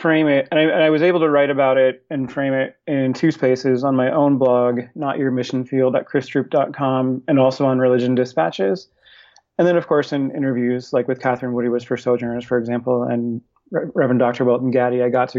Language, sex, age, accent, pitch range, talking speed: English, male, 30-49, American, 125-145 Hz, 220 wpm